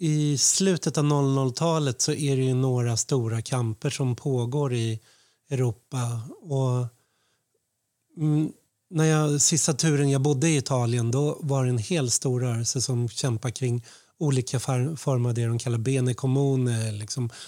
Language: Swedish